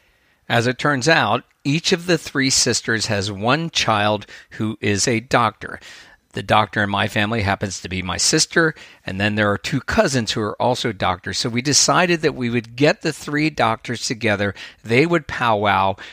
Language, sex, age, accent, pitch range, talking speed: English, male, 50-69, American, 105-135 Hz, 185 wpm